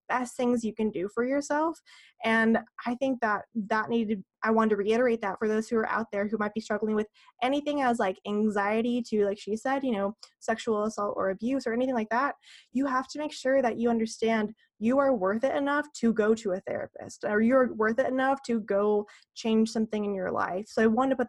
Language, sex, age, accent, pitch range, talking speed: English, female, 20-39, American, 205-245 Hz, 230 wpm